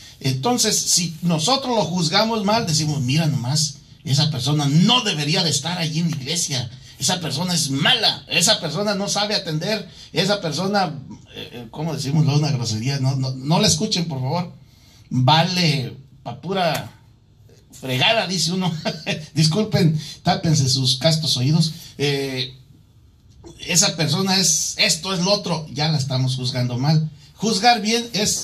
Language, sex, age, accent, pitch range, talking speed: English, male, 50-69, Mexican, 130-180 Hz, 145 wpm